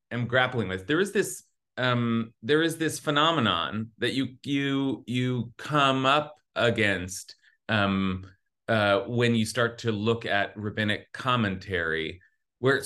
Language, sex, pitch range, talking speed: English, male, 115-155 Hz, 135 wpm